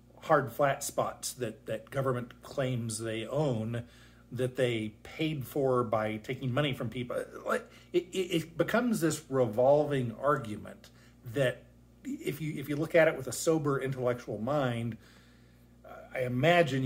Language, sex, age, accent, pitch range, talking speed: English, male, 40-59, American, 120-155 Hz, 135 wpm